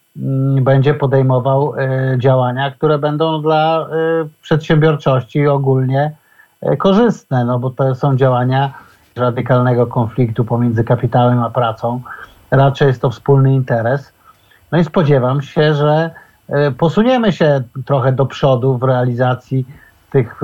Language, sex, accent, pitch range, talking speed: Polish, male, native, 120-145 Hz, 110 wpm